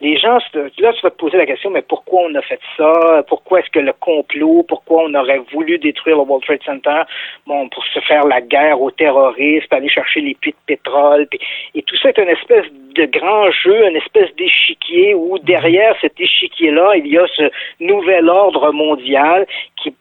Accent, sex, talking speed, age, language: Canadian, male, 205 wpm, 50-69, French